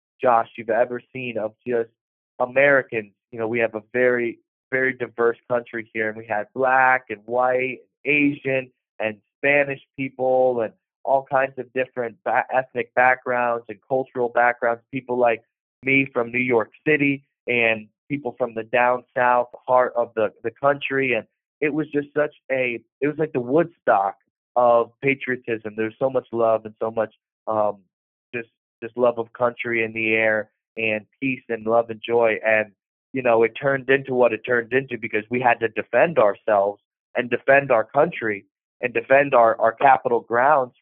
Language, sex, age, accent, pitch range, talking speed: English, male, 30-49, American, 115-130 Hz, 170 wpm